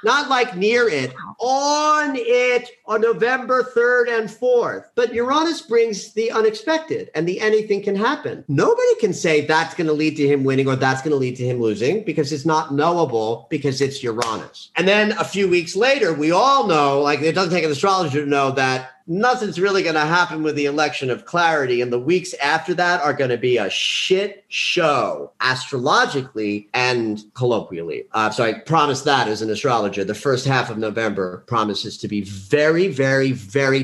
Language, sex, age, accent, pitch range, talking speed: English, male, 40-59, American, 125-195 Hz, 190 wpm